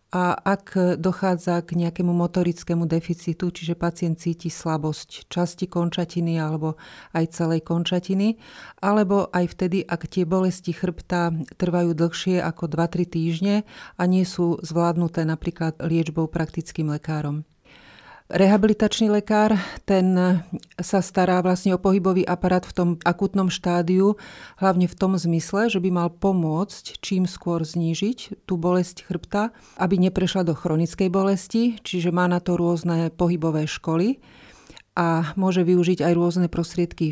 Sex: female